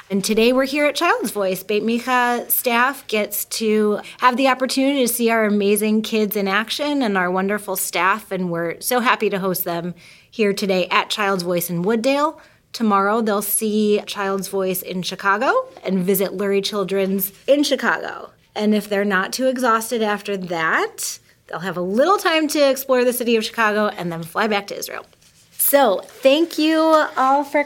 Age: 30-49